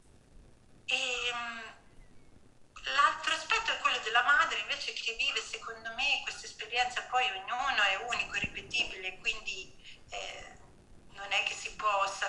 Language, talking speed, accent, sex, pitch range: Italian, 130 wpm, native, female, 190-270 Hz